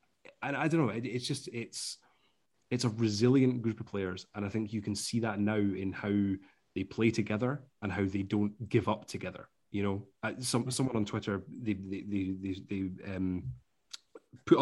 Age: 20-39